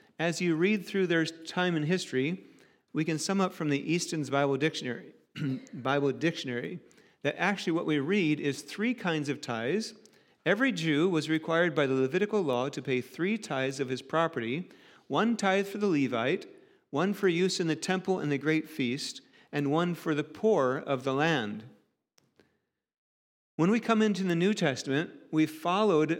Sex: male